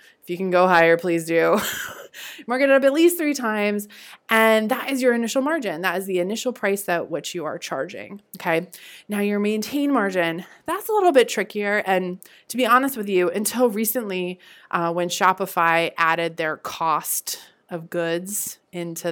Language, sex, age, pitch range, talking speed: English, female, 20-39, 170-235 Hz, 180 wpm